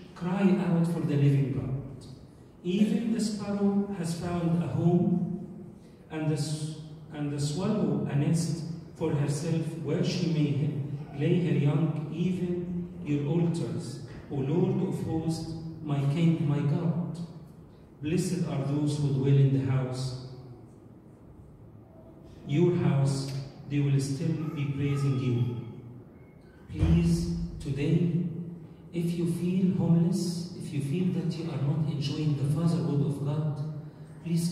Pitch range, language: 145-175 Hz, English